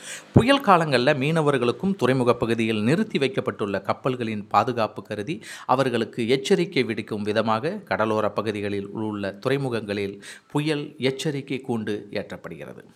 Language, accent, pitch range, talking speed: Tamil, native, 110-155 Hz, 100 wpm